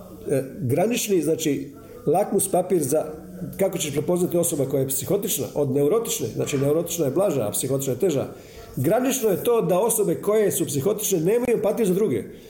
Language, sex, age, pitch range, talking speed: Croatian, male, 50-69, 140-205 Hz, 165 wpm